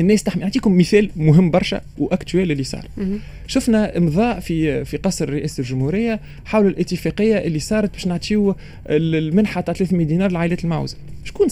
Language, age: Arabic, 20-39